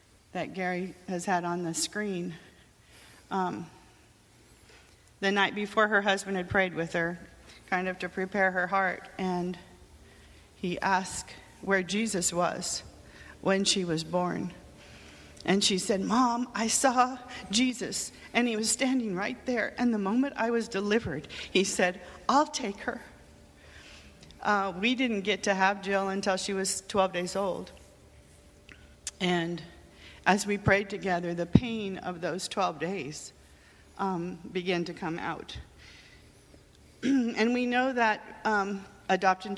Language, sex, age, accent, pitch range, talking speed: English, female, 40-59, American, 175-205 Hz, 140 wpm